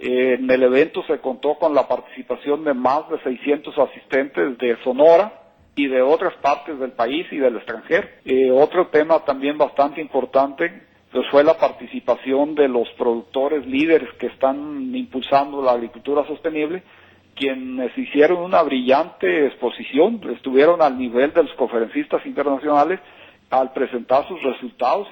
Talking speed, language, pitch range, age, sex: 140 wpm, Spanish, 125-155 Hz, 50-69, male